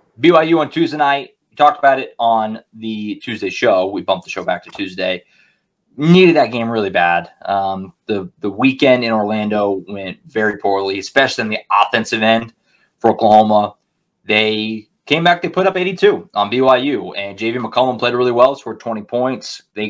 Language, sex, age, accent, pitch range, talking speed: English, male, 20-39, American, 110-135 Hz, 175 wpm